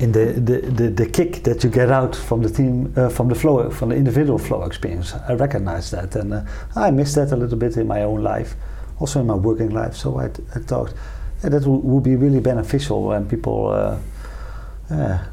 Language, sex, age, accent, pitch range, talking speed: Danish, male, 40-59, Dutch, 105-125 Hz, 215 wpm